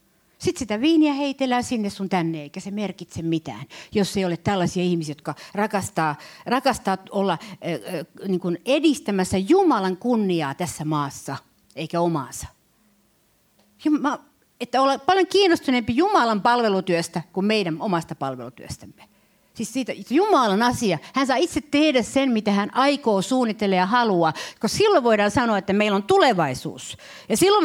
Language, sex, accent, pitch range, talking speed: Finnish, female, native, 170-235 Hz, 150 wpm